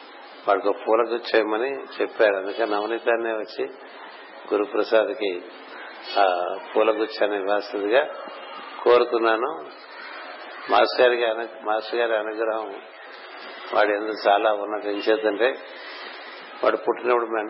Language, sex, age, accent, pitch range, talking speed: Telugu, male, 60-79, native, 105-115 Hz, 75 wpm